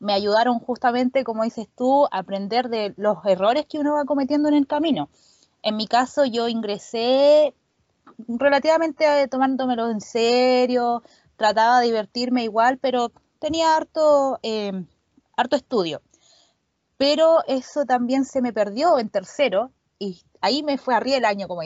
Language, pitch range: Spanish, 210-275 Hz